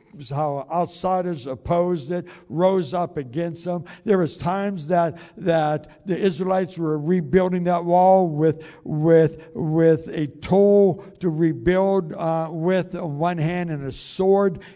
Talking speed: 140 wpm